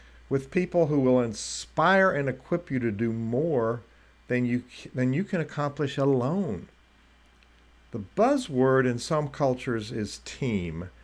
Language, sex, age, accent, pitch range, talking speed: English, male, 50-69, American, 95-145 Hz, 130 wpm